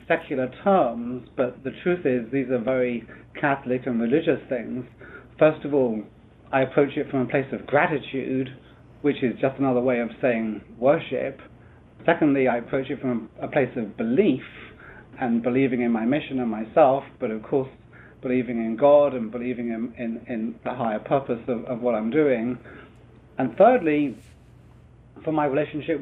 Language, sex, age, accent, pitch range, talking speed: English, male, 30-49, British, 120-140 Hz, 165 wpm